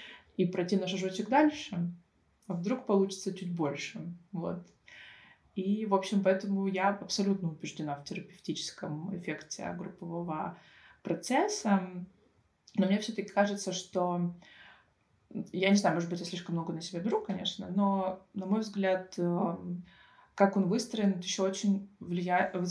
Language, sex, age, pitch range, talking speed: Russian, female, 20-39, 170-195 Hz, 130 wpm